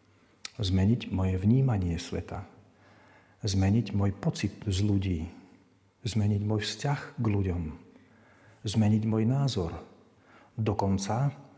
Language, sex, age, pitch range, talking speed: Slovak, male, 50-69, 95-115 Hz, 95 wpm